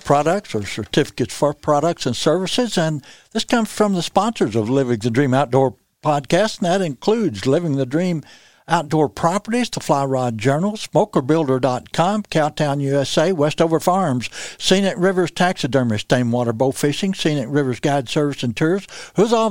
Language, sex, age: English, male, 60-79